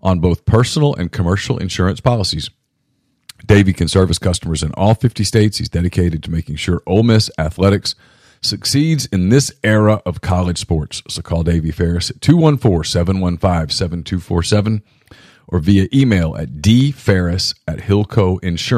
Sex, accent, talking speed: male, American, 130 wpm